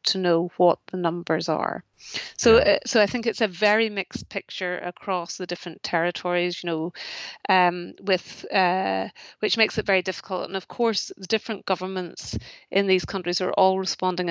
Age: 30-49